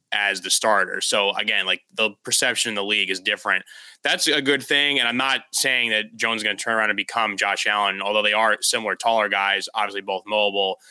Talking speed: 225 wpm